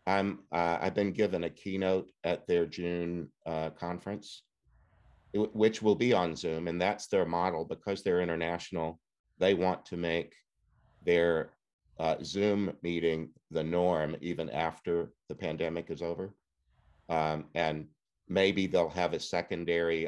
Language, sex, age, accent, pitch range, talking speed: English, male, 50-69, American, 80-95 Hz, 140 wpm